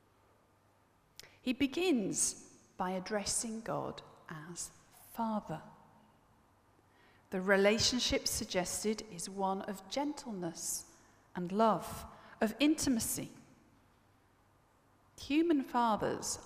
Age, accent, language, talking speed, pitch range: 40-59, British, English, 75 wpm, 180-250 Hz